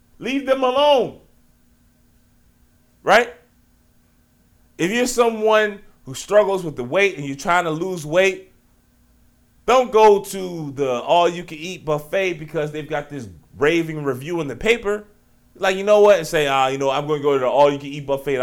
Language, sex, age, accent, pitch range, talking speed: English, male, 30-49, American, 150-235 Hz, 165 wpm